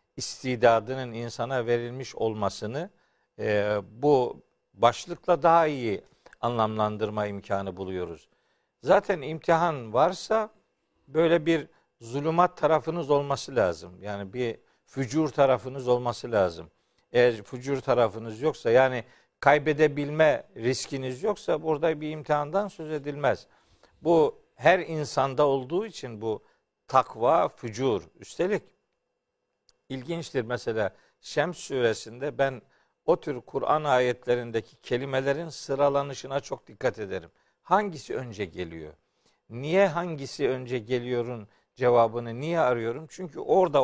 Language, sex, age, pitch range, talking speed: Turkish, male, 50-69, 120-165 Hz, 105 wpm